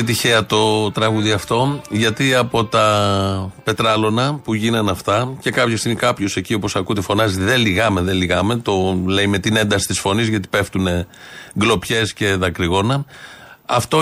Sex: male